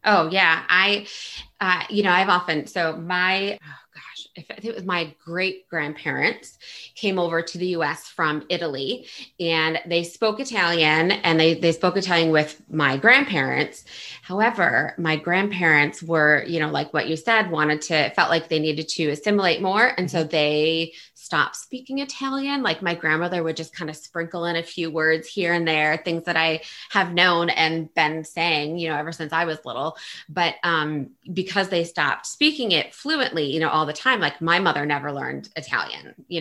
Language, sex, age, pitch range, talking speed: English, female, 20-39, 160-185 Hz, 185 wpm